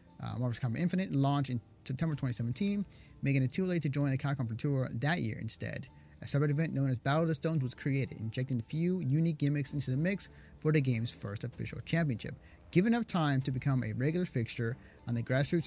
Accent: American